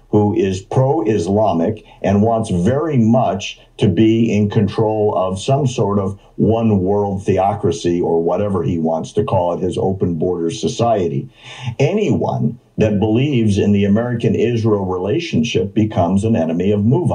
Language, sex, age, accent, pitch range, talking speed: English, male, 50-69, American, 105-135 Hz, 135 wpm